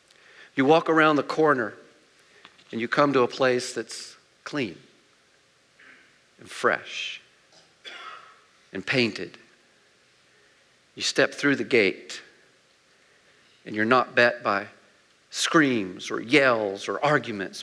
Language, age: English, 50-69